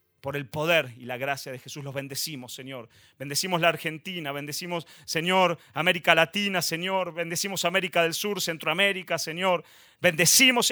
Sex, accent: male, Argentinian